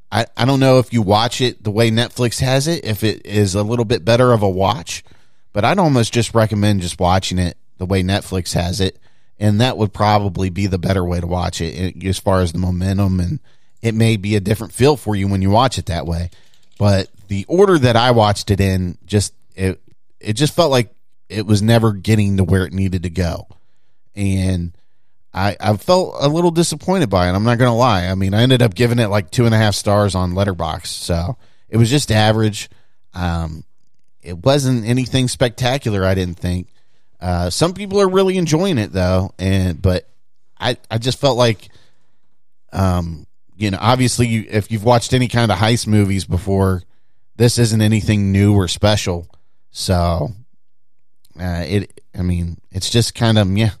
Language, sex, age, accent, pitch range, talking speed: English, male, 30-49, American, 95-120 Hz, 195 wpm